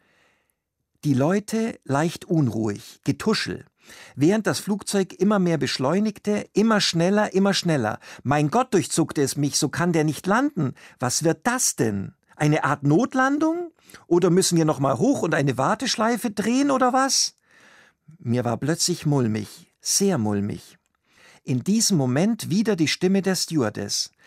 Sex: male